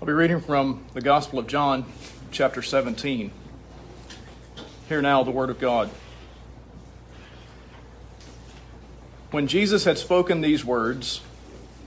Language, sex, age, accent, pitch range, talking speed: English, male, 40-59, American, 130-160 Hz, 110 wpm